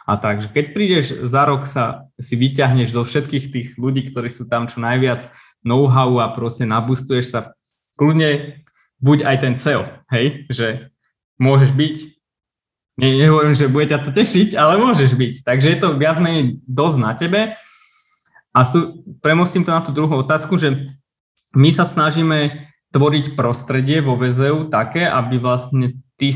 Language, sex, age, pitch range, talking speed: Slovak, male, 20-39, 125-145 Hz, 155 wpm